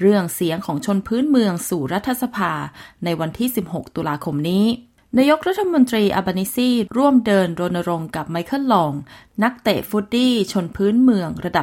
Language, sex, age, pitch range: Thai, female, 20-39, 170-225 Hz